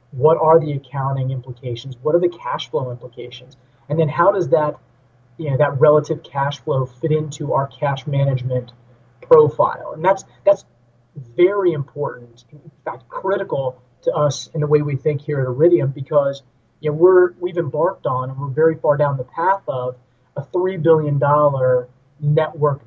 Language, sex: English, male